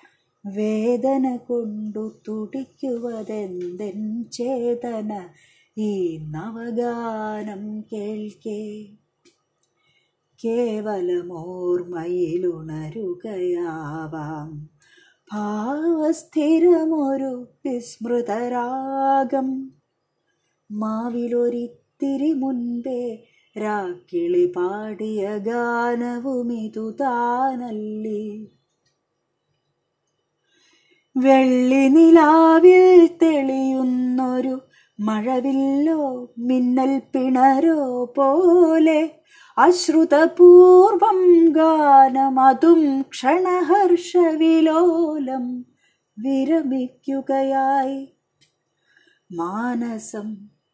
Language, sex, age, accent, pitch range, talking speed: Malayalam, female, 20-39, native, 215-275 Hz, 30 wpm